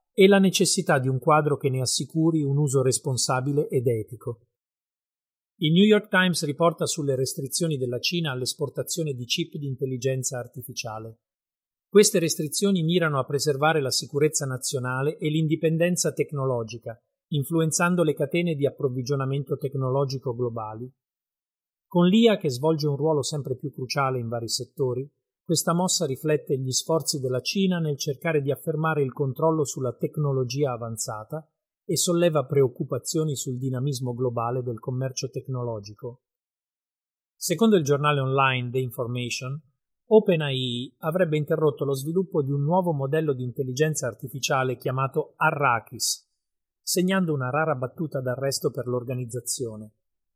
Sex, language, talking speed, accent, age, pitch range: male, Italian, 130 wpm, native, 40-59, 130-160 Hz